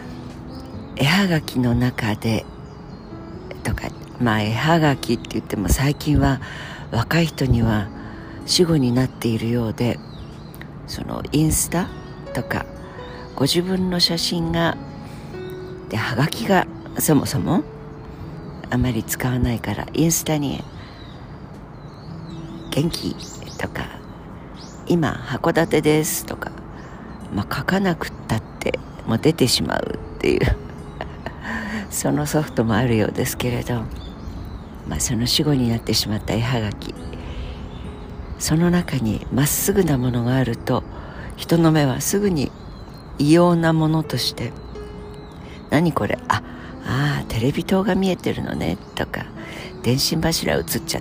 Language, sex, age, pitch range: Japanese, female, 50-69, 110-160 Hz